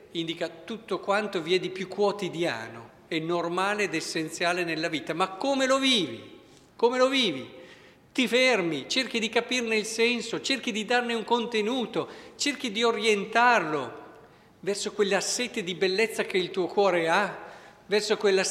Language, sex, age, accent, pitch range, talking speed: Italian, male, 50-69, native, 165-235 Hz, 155 wpm